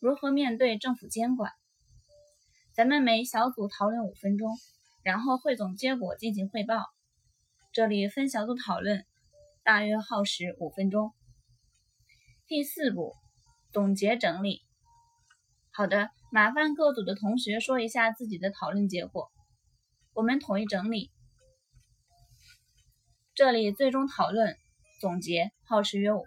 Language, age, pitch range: Chinese, 20-39, 175-245 Hz